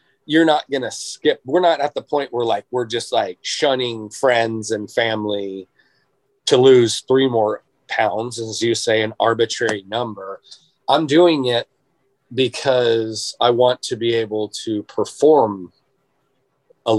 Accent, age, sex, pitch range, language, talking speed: American, 30-49, male, 105-135 Hz, English, 150 wpm